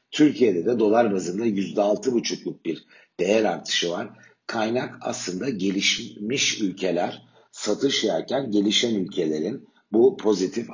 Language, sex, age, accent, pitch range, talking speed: Turkish, male, 60-79, native, 90-110 Hz, 105 wpm